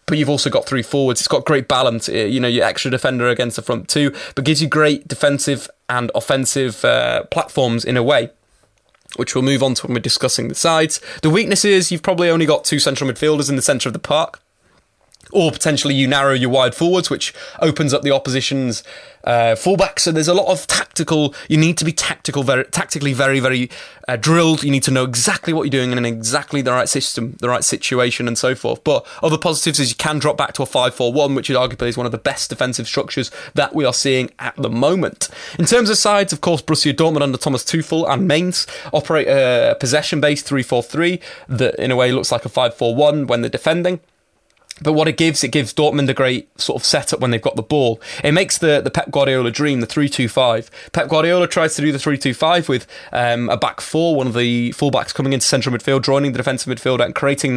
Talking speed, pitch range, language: 230 wpm, 125-155 Hz, English